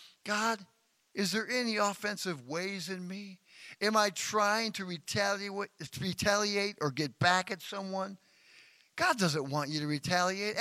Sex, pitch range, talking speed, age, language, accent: male, 170-220 Hz, 135 wpm, 50-69, English, American